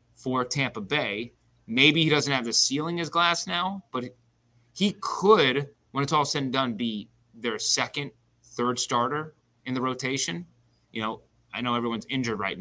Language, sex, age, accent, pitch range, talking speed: English, male, 30-49, American, 120-150 Hz, 170 wpm